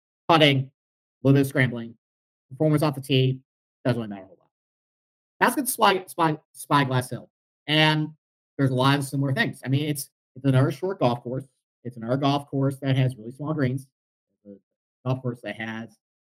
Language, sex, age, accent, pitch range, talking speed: English, male, 50-69, American, 120-150 Hz, 200 wpm